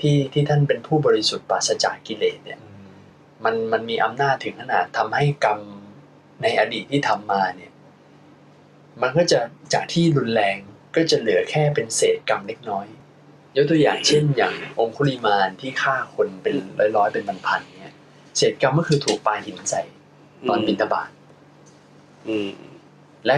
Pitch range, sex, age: 115-160 Hz, male, 20-39